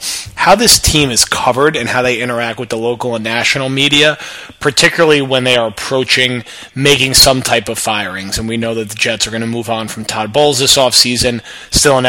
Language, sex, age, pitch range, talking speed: English, male, 30-49, 115-135 Hz, 215 wpm